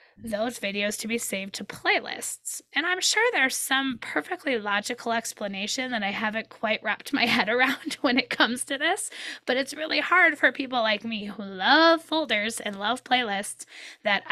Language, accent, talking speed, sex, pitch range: English, American, 180 wpm, female, 205-260 Hz